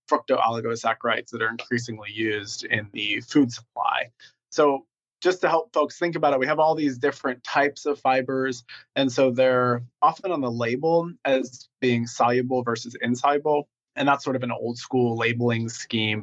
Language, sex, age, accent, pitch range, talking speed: English, male, 30-49, American, 120-140 Hz, 170 wpm